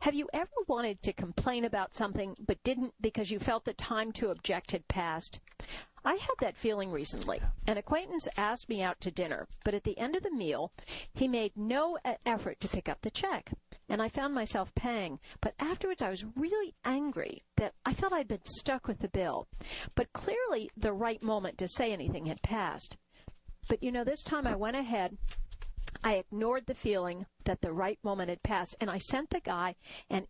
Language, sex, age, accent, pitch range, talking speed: English, female, 50-69, American, 195-270 Hz, 200 wpm